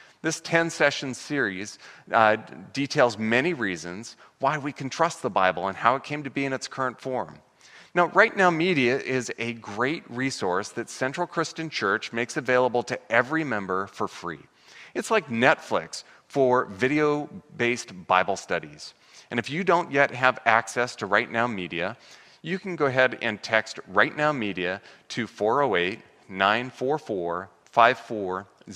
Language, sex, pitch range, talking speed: English, male, 105-145 Hz, 150 wpm